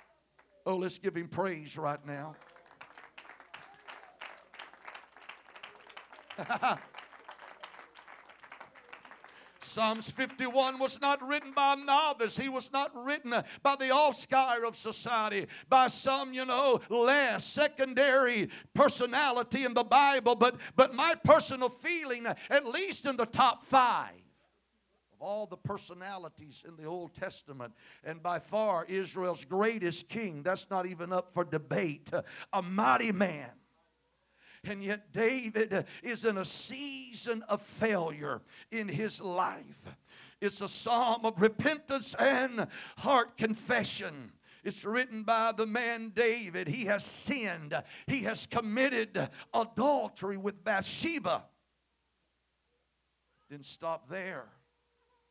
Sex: male